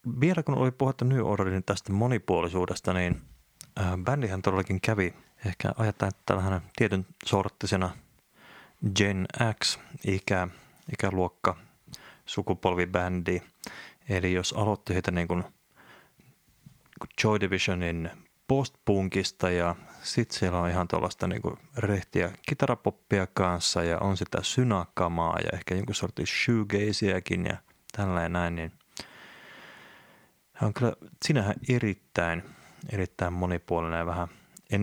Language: Finnish